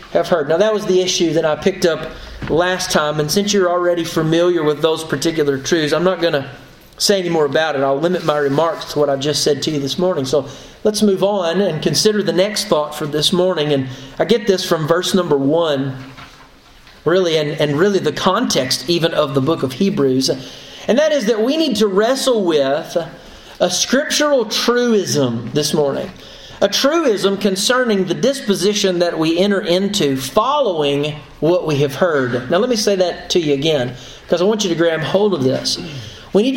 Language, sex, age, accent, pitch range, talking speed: English, male, 40-59, American, 150-210 Hz, 200 wpm